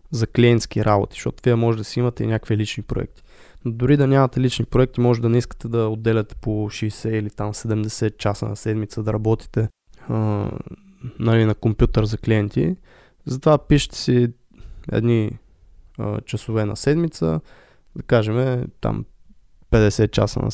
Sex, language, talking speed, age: male, Bulgarian, 160 wpm, 20-39